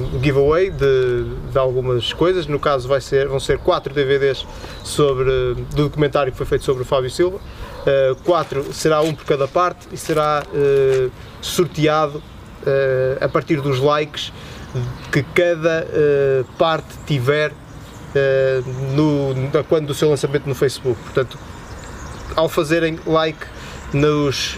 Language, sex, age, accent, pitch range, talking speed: Portuguese, male, 20-39, Brazilian, 130-155 Hz, 140 wpm